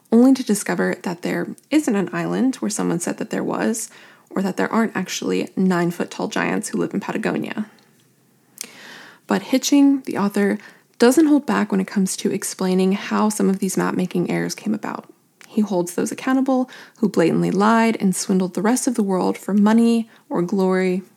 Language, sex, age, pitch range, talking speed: English, female, 20-39, 190-240 Hz, 180 wpm